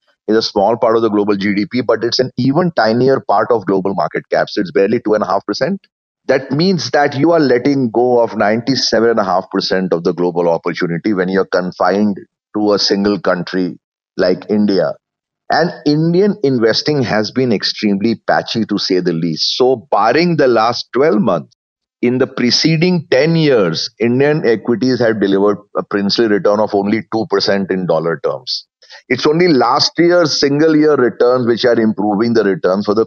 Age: 30-49